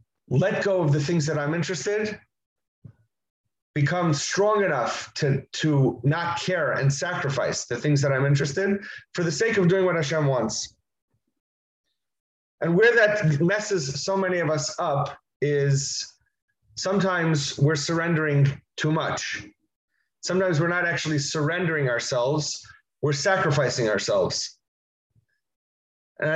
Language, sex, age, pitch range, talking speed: English, male, 30-49, 140-180 Hz, 125 wpm